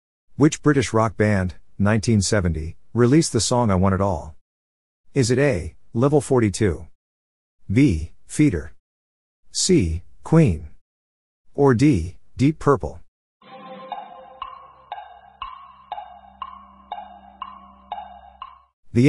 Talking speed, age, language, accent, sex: 80 wpm, 50-69, English, American, male